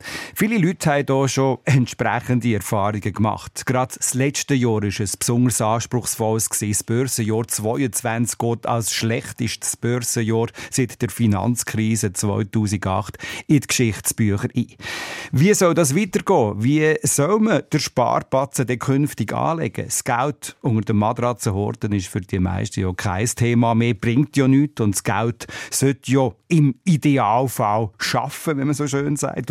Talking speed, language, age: 150 wpm, German, 50-69